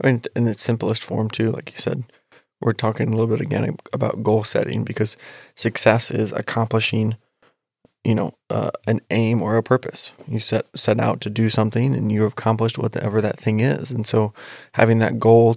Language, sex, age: English, male, 20-39